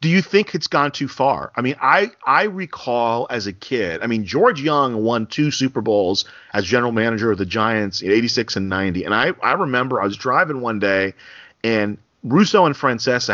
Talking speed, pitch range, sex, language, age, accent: 210 wpm, 105-130 Hz, male, English, 40-59, American